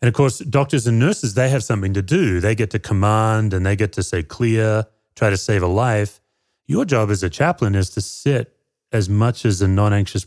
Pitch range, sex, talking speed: 100-125 Hz, male, 230 wpm